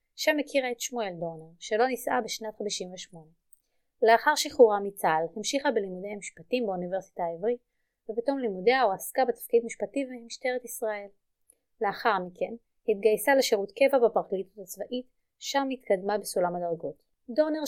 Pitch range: 190-245 Hz